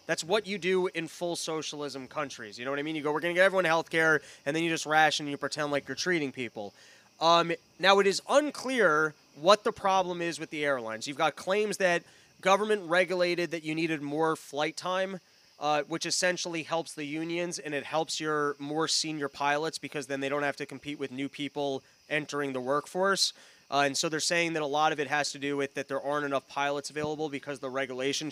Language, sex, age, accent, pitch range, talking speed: English, male, 20-39, American, 145-170 Hz, 225 wpm